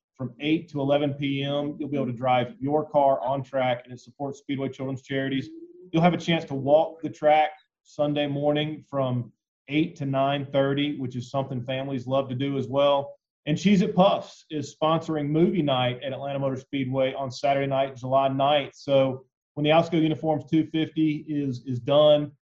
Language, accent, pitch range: English, American, 135-155 Hz